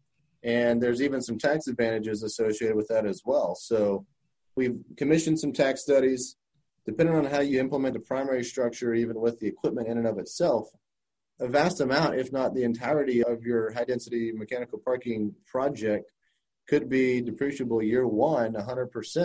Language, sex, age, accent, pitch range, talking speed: English, male, 30-49, American, 115-130 Hz, 160 wpm